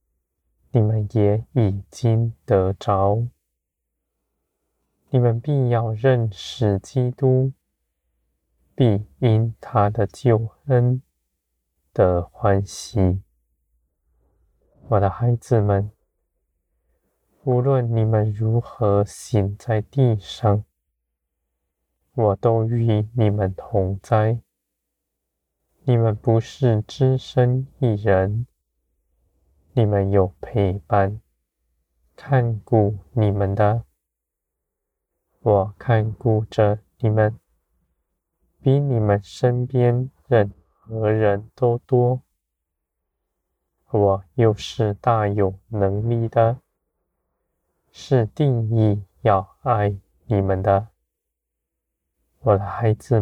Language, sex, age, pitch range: Chinese, male, 20-39, 70-115 Hz